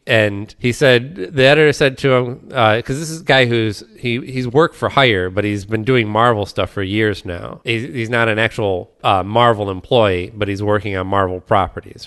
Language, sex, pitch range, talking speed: English, male, 95-115 Hz, 215 wpm